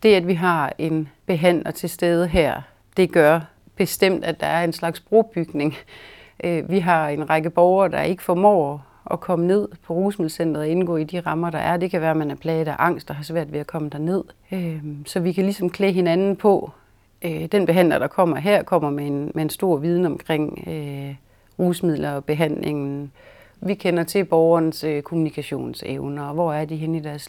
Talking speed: 190 wpm